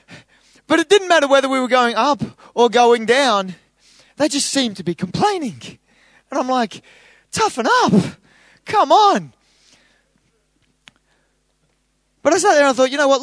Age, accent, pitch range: 20-39, Australian, 225-290 Hz